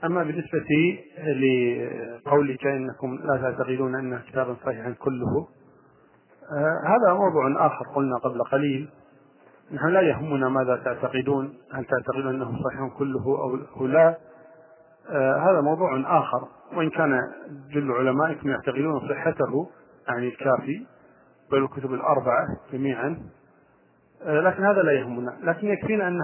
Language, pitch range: Arabic, 130-160 Hz